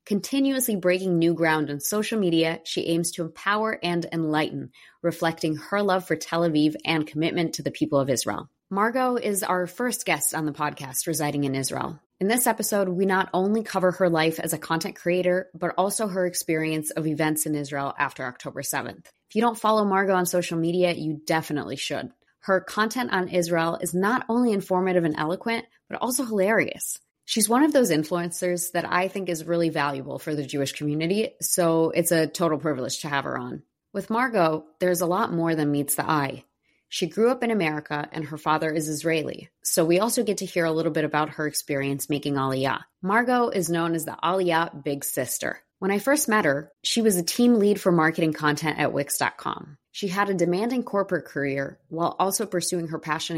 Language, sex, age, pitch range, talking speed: English, female, 20-39, 155-195 Hz, 200 wpm